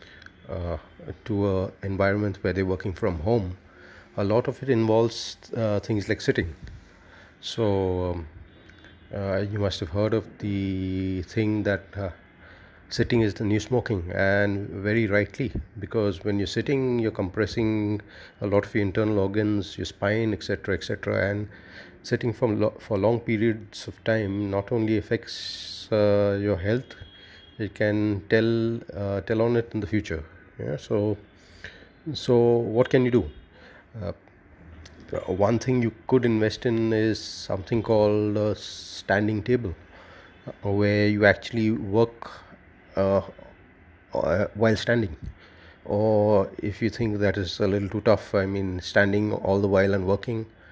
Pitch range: 95-110 Hz